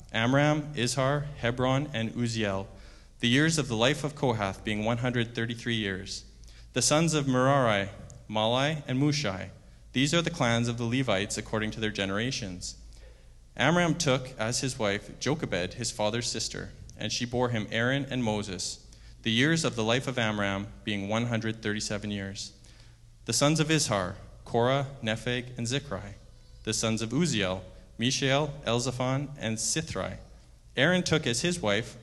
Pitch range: 105-135 Hz